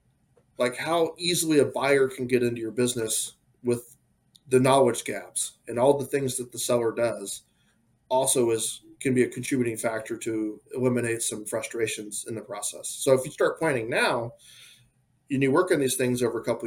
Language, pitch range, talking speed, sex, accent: English, 120-150 Hz, 185 wpm, male, American